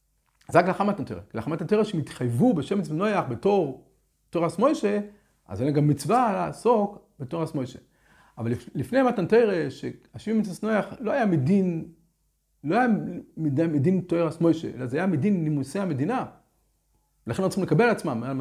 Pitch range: 140-200 Hz